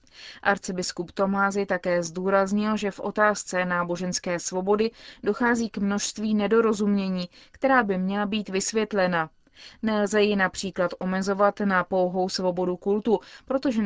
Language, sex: Czech, female